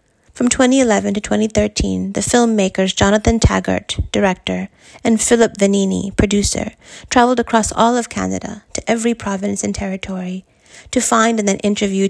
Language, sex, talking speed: English, female, 140 wpm